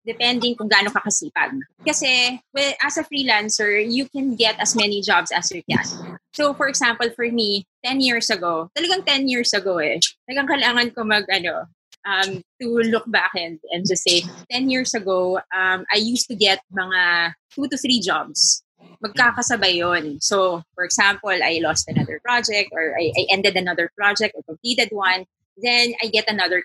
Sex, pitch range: female, 185-245 Hz